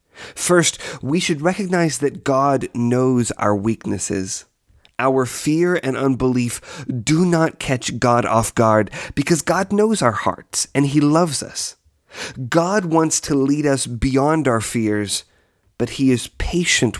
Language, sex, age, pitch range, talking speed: English, male, 30-49, 115-160 Hz, 140 wpm